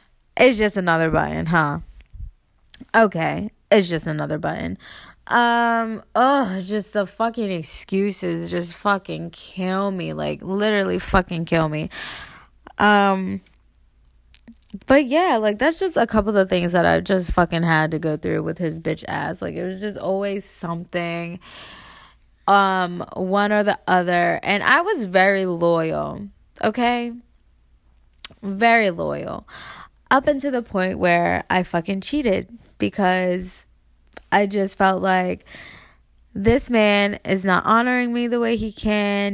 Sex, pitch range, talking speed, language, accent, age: female, 175-225 Hz, 135 wpm, English, American, 20-39